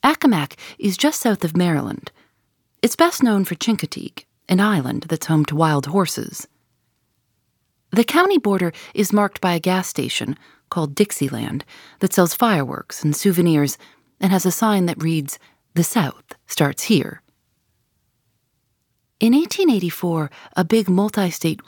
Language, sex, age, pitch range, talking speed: English, female, 40-59, 150-205 Hz, 135 wpm